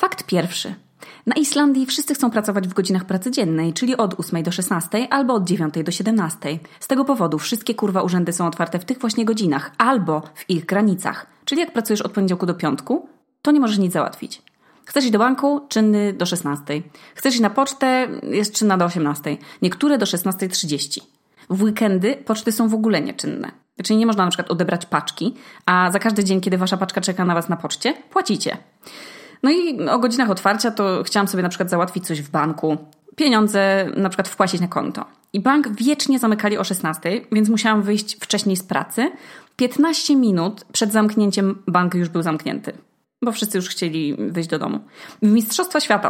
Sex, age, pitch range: female, 20-39, 175-240 Hz